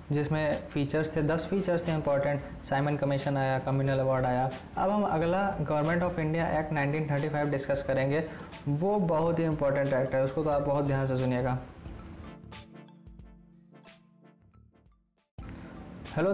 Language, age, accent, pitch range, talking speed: Finnish, 20-39, Indian, 140-180 Hz, 135 wpm